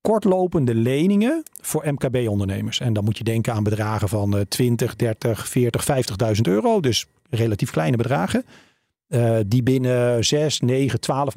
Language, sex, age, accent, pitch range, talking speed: Dutch, male, 40-59, Dutch, 120-190 Hz, 145 wpm